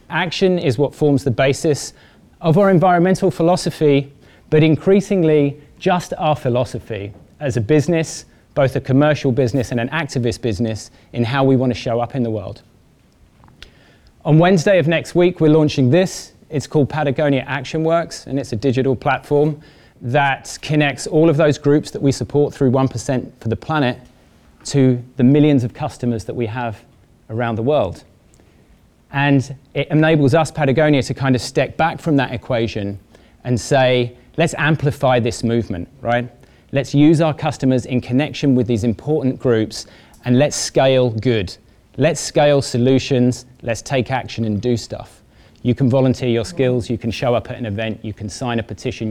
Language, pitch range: English, 120-150 Hz